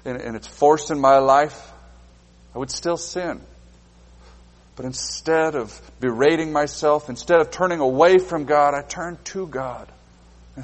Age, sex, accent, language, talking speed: 50-69, male, American, English, 145 wpm